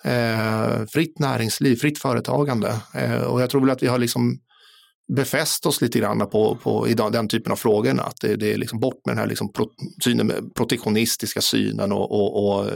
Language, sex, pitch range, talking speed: Swedish, male, 105-135 Hz, 155 wpm